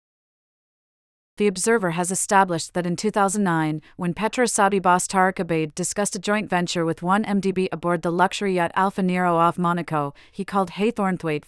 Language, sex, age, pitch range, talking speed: English, female, 40-59, 165-200 Hz, 150 wpm